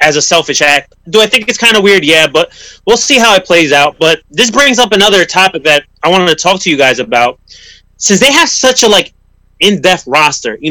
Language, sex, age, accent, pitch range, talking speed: English, male, 30-49, American, 155-220 Hz, 240 wpm